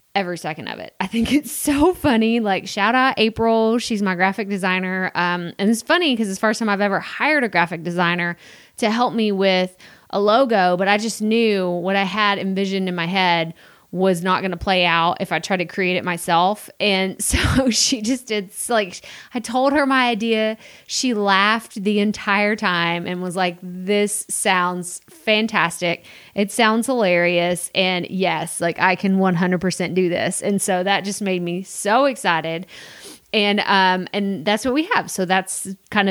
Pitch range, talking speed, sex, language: 180-225 Hz, 190 wpm, female, English